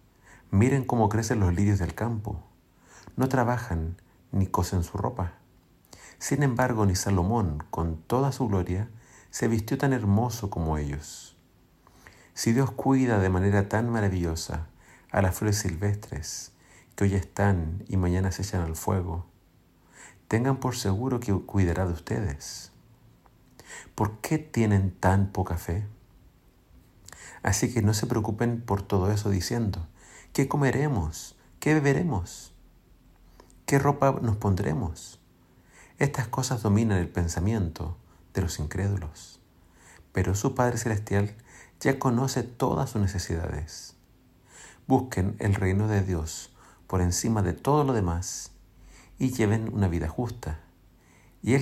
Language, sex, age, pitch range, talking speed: Spanish, male, 50-69, 90-120 Hz, 130 wpm